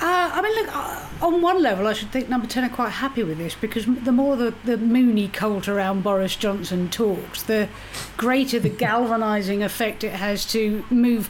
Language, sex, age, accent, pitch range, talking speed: English, female, 40-59, British, 195-235 Hz, 200 wpm